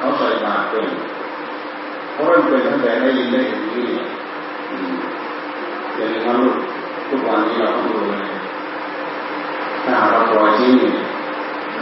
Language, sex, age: Thai, female, 40-59